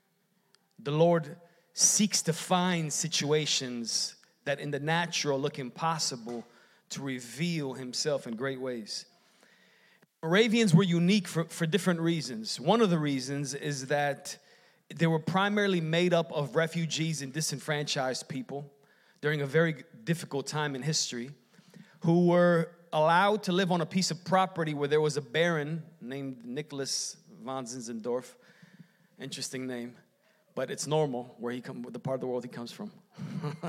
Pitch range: 150-195 Hz